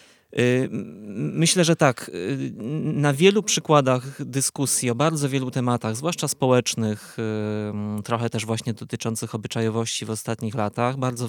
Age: 20-39